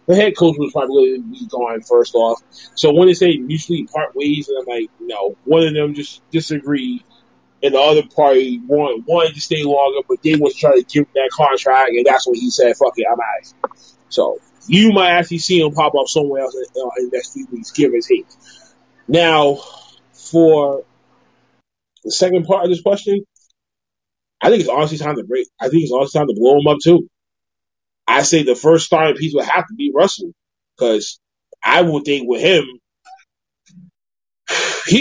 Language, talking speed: English, 195 wpm